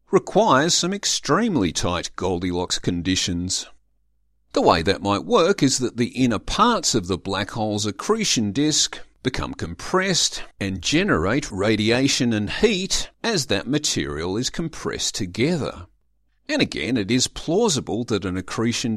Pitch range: 100-155 Hz